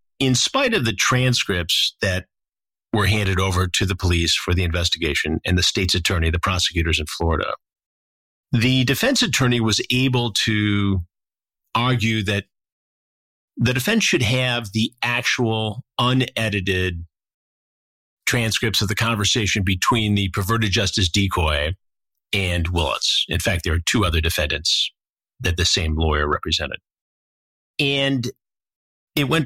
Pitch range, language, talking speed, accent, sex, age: 90-115 Hz, English, 130 wpm, American, male, 50-69